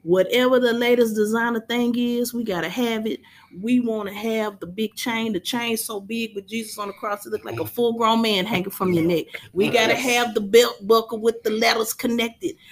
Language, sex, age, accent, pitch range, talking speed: English, female, 30-49, American, 185-230 Hz, 230 wpm